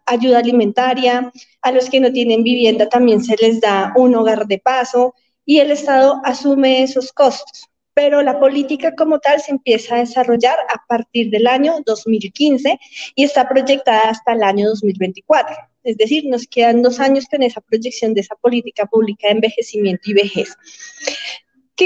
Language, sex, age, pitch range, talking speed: Spanish, female, 30-49, 235-280 Hz, 165 wpm